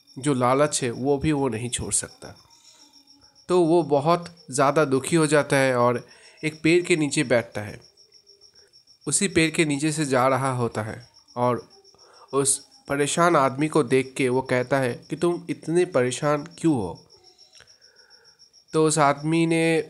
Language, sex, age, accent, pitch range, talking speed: Hindi, male, 30-49, native, 135-170 Hz, 160 wpm